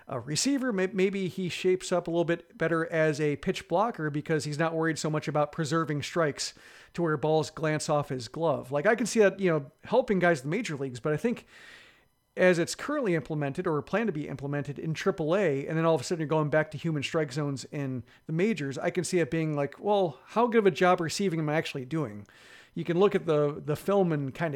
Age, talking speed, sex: 40-59, 245 wpm, male